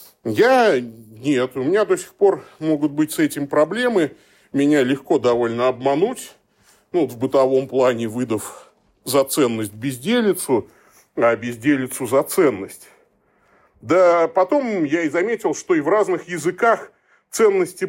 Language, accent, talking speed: Russian, native, 135 wpm